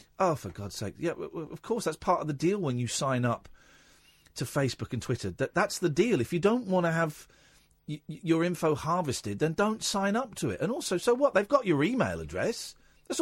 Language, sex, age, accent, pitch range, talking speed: English, male, 40-59, British, 120-190 Hz, 225 wpm